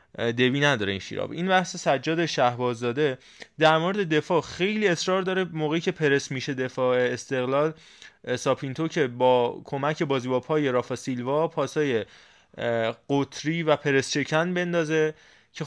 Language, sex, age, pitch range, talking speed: Persian, male, 20-39, 130-165 Hz, 140 wpm